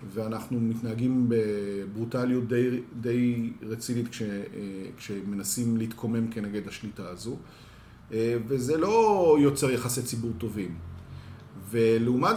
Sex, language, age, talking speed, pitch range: male, Hebrew, 40-59, 90 wpm, 110-135 Hz